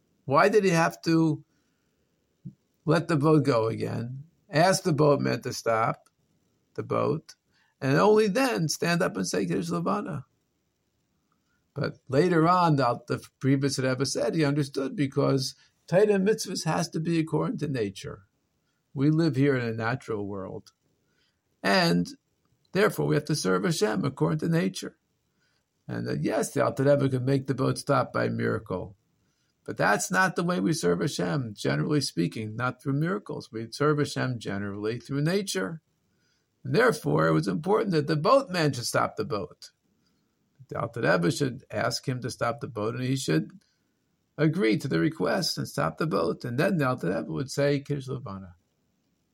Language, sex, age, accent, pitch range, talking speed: English, male, 50-69, American, 125-160 Hz, 160 wpm